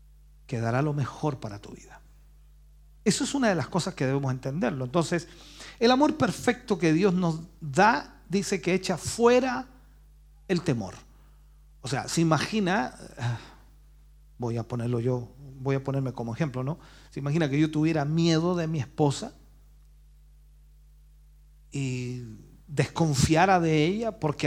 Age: 50-69